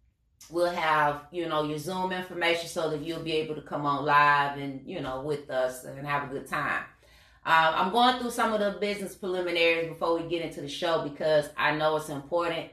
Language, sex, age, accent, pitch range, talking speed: English, female, 30-49, American, 155-185 Hz, 215 wpm